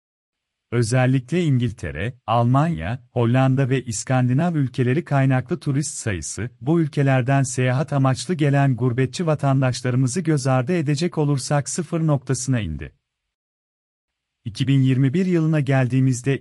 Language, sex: Turkish, male